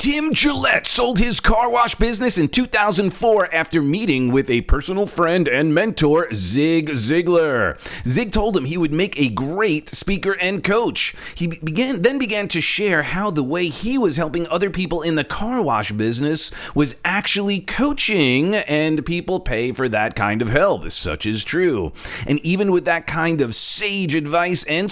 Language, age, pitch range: English, 40-59, 135-190 Hz